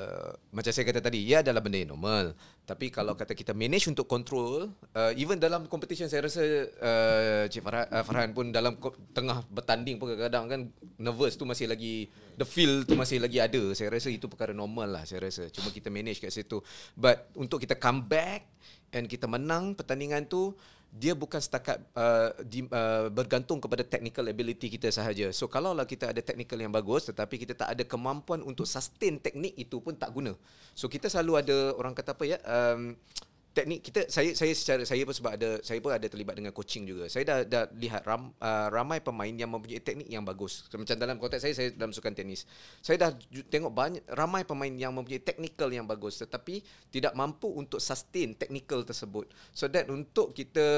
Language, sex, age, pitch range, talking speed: Malay, male, 30-49, 115-145 Hz, 195 wpm